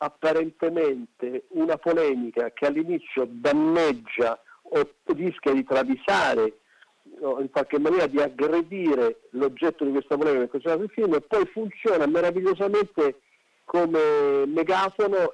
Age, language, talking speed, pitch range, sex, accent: 50-69, Italian, 115 wpm, 140-210 Hz, male, native